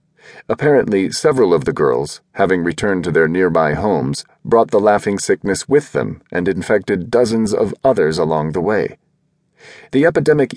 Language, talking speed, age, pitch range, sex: English, 155 wpm, 40-59, 105-145 Hz, male